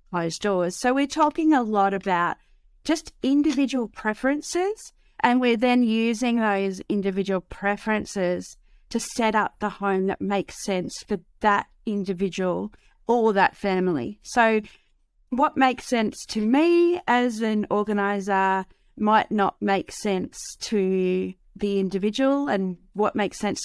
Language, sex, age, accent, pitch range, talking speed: English, female, 30-49, Australian, 195-230 Hz, 130 wpm